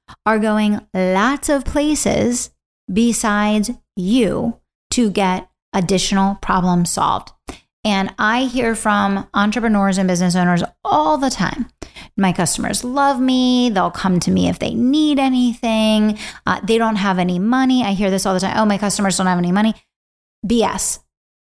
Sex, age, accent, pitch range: female, 30-49, American, 180-220 Hz